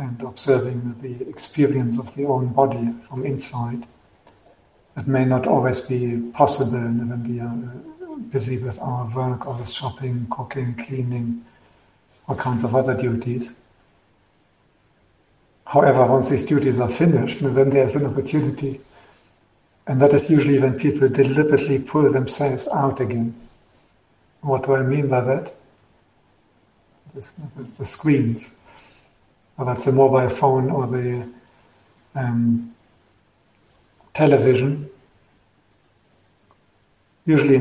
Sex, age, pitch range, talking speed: male, 50-69, 120-135 Hz, 115 wpm